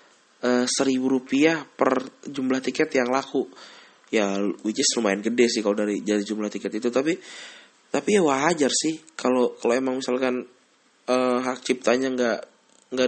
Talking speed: 155 wpm